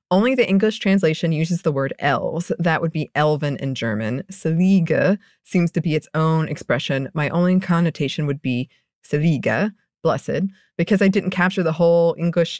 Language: English